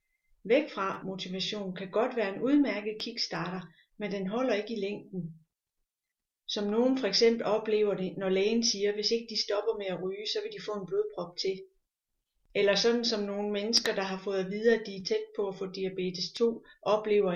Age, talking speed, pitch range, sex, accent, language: 30-49, 200 wpm, 190-225 Hz, female, native, Danish